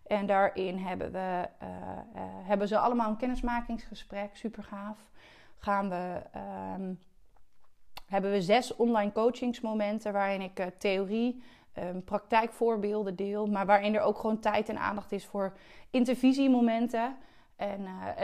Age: 20-39